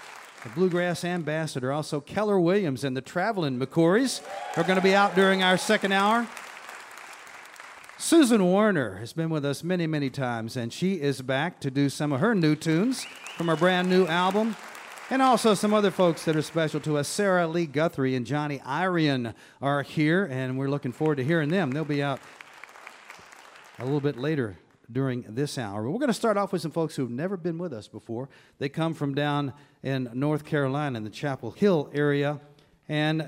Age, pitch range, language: 40-59, 130-175 Hz, English